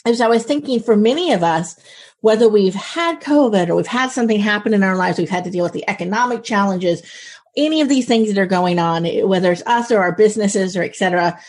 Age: 30-49